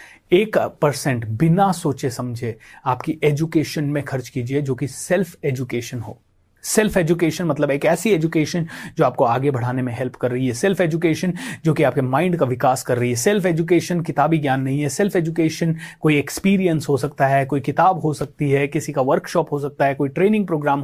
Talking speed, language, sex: 195 wpm, Hindi, male